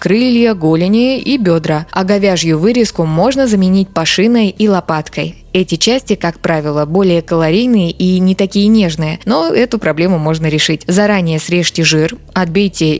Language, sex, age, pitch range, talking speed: Russian, female, 20-39, 165-215 Hz, 145 wpm